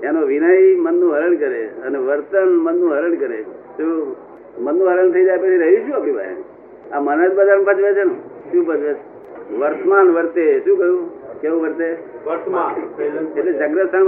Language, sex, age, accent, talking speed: Gujarati, male, 60-79, native, 155 wpm